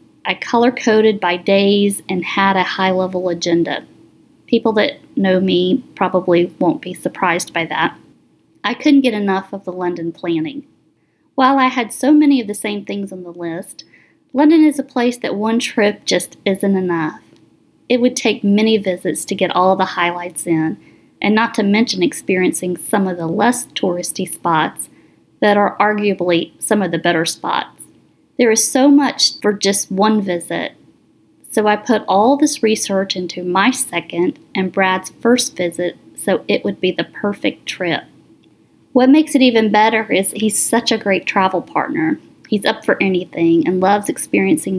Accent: American